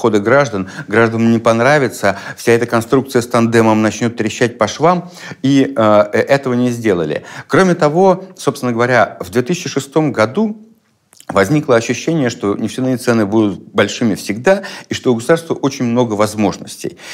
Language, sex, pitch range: Russian, male, 110-140 Hz